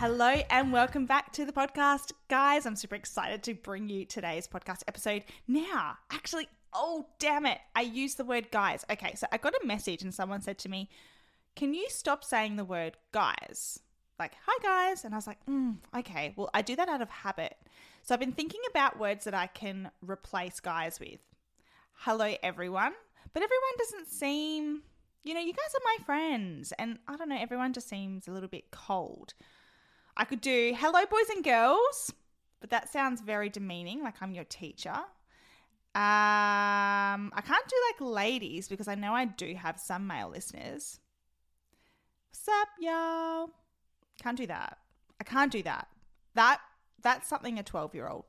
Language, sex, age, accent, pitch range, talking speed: English, female, 10-29, Australian, 200-290 Hz, 180 wpm